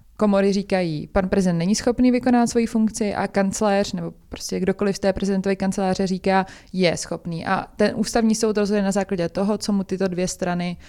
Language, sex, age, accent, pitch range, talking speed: Czech, female, 20-39, native, 185-215 Hz, 185 wpm